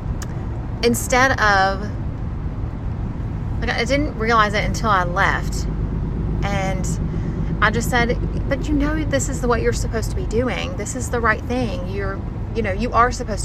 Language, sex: English, female